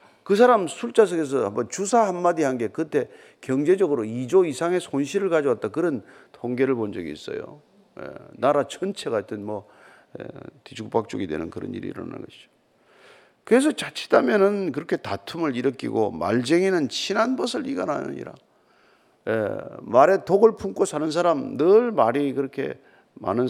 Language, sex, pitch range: Korean, male, 135-225 Hz